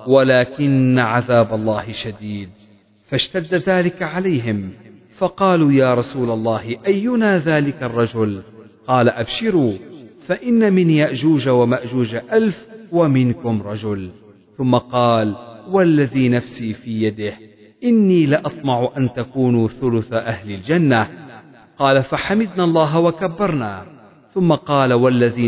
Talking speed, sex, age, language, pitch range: 100 wpm, male, 40-59, Arabic, 110-145 Hz